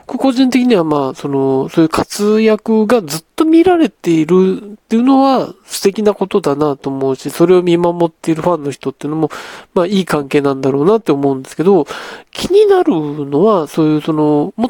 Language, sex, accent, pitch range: Japanese, male, native, 140-215 Hz